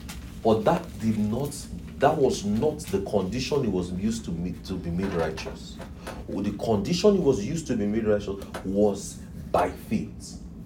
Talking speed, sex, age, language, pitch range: 145 wpm, male, 40-59, English, 85-115 Hz